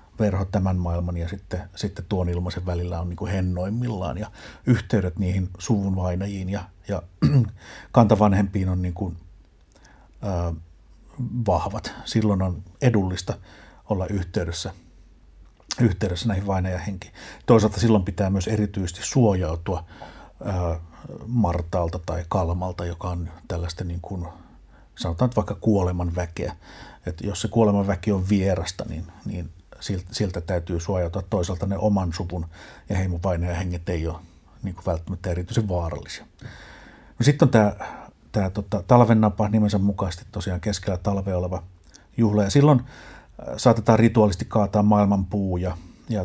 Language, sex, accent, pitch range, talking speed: Finnish, male, native, 90-105 Hz, 125 wpm